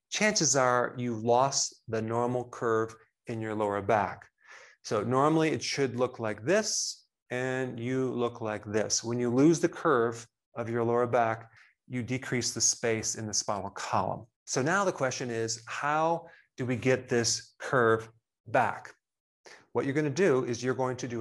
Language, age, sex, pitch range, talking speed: English, 30-49, male, 115-135 Hz, 175 wpm